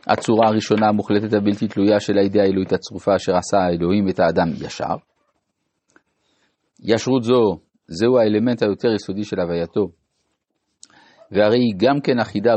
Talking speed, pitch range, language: 125 wpm, 95-120 Hz, Hebrew